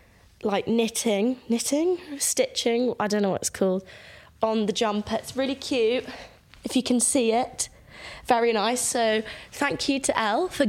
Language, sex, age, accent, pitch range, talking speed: English, female, 20-39, British, 195-250 Hz, 165 wpm